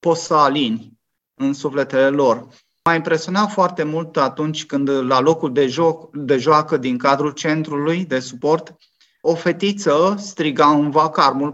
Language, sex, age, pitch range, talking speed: Romanian, male, 30-49, 140-160 Hz, 140 wpm